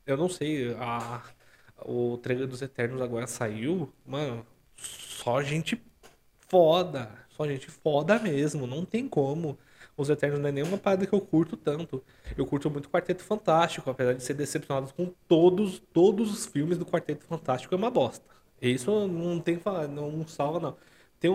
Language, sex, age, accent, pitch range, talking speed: Portuguese, male, 20-39, Brazilian, 130-170 Hz, 170 wpm